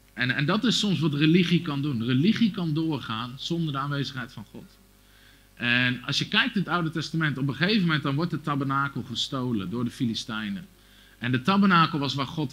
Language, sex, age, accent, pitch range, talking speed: Dutch, male, 50-69, Dutch, 120-160 Hz, 205 wpm